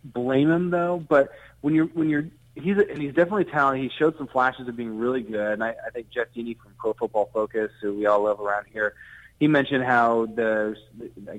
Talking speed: 225 wpm